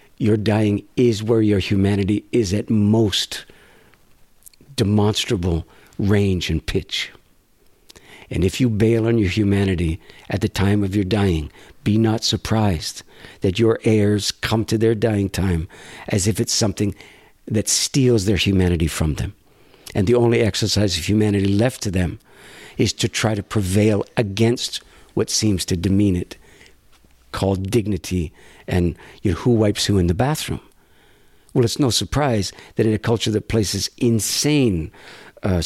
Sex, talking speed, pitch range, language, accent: male, 150 wpm, 100-115 Hz, English, American